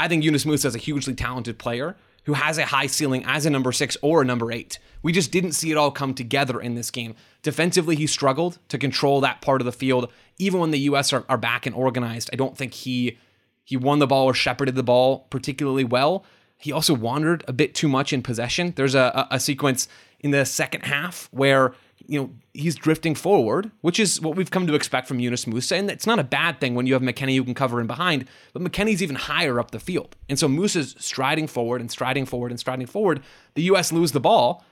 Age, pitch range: 20-39, 125-155 Hz